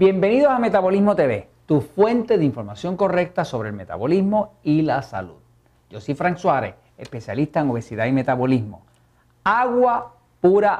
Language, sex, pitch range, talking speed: Spanish, male, 120-185 Hz, 145 wpm